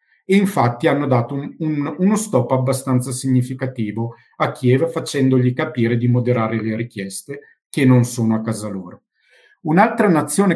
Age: 50-69